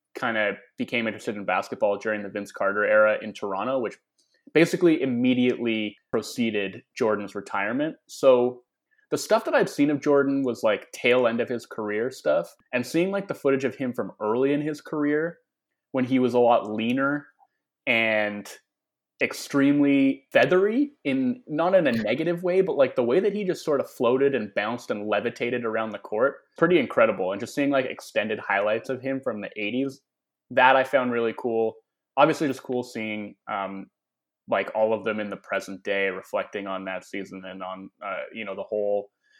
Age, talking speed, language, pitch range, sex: 20-39, 185 wpm, English, 110-160 Hz, male